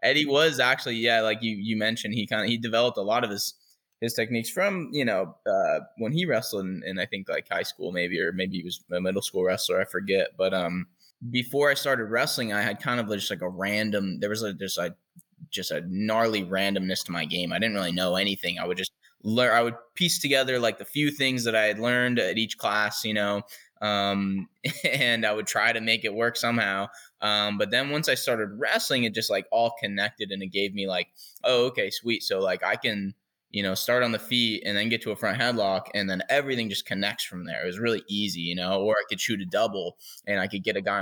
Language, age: English, 10-29